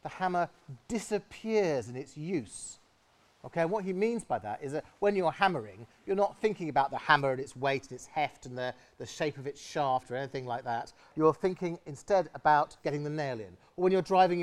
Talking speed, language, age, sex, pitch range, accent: 220 wpm, English, 40-59, male, 125-180 Hz, British